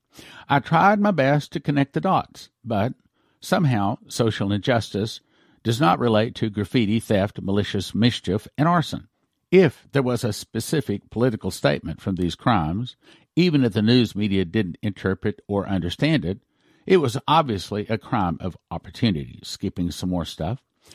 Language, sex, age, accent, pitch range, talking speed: English, male, 60-79, American, 105-145 Hz, 150 wpm